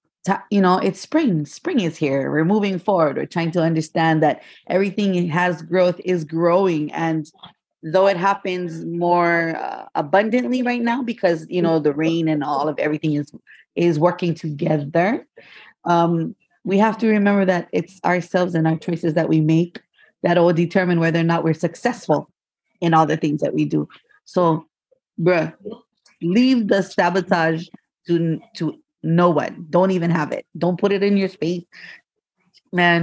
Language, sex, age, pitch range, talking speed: English, female, 30-49, 160-195 Hz, 165 wpm